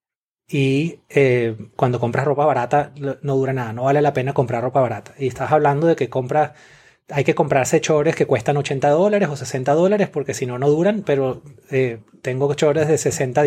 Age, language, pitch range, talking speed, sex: 30-49, English, 130-150 Hz, 200 wpm, male